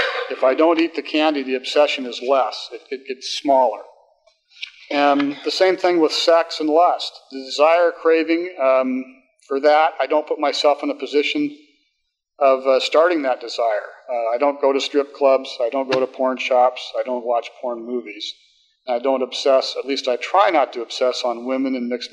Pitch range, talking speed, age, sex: 130-170 Hz, 200 wpm, 40-59, male